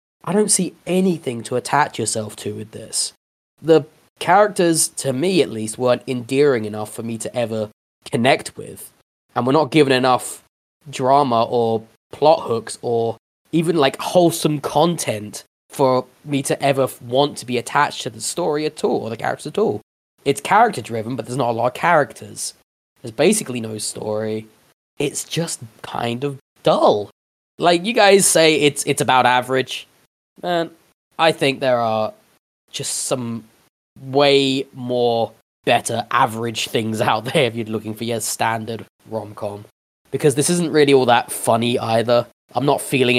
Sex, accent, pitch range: male, British, 115-145 Hz